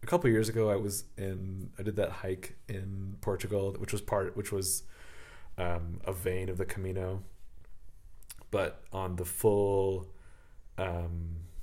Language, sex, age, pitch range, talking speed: English, male, 30-49, 90-95 Hz, 150 wpm